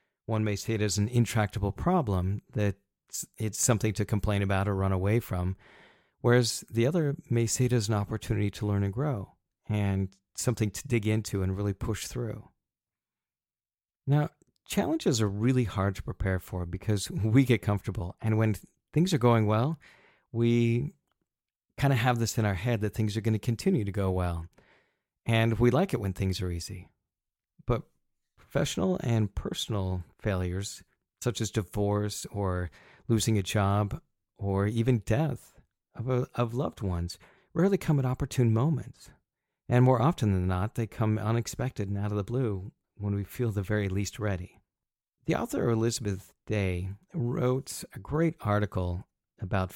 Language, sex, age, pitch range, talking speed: English, male, 40-59, 95-120 Hz, 165 wpm